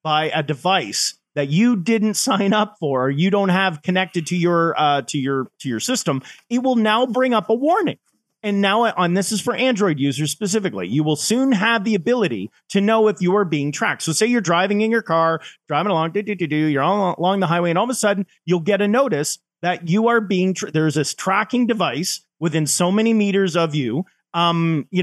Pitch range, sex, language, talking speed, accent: 150-205 Hz, male, English, 220 wpm, American